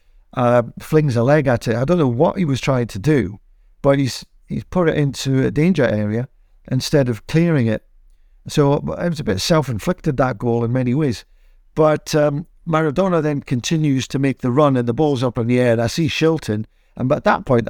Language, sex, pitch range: English, male, 120-155 Hz